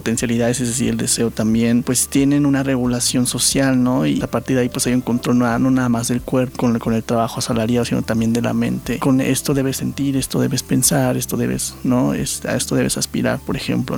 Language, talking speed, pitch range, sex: Spanish, 230 wpm, 120-140 Hz, male